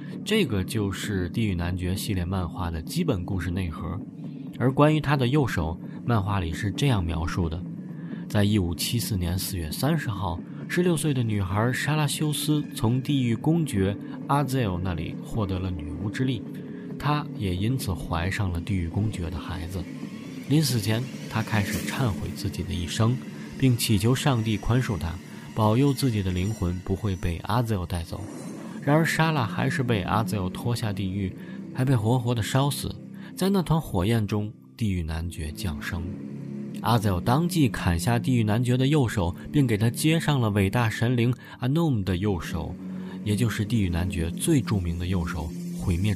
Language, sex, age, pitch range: Chinese, male, 20-39, 90-130 Hz